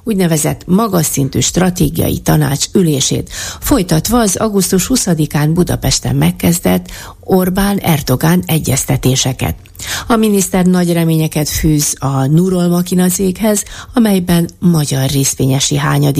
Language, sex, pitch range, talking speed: Hungarian, female, 140-185 Hz, 100 wpm